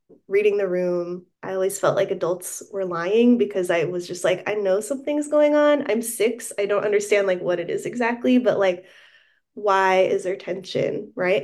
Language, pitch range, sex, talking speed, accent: English, 190-255 Hz, female, 195 wpm, American